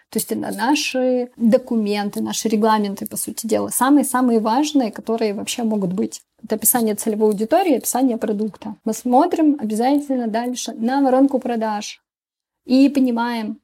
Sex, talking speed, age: female, 135 wpm, 20-39